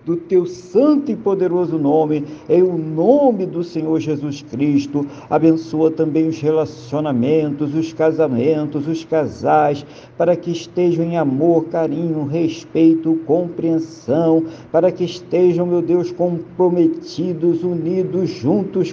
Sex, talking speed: male, 115 wpm